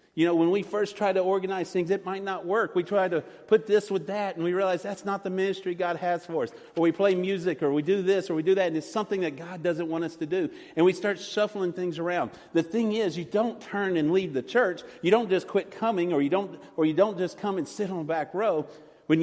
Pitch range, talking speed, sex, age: 175-215 Hz, 280 wpm, male, 40-59